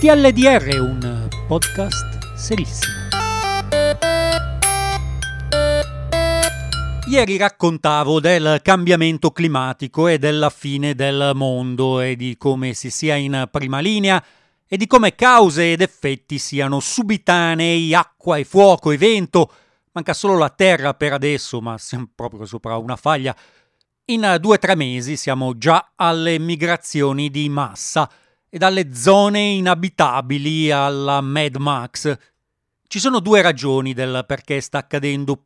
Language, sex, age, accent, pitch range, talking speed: Italian, male, 40-59, native, 125-175 Hz, 125 wpm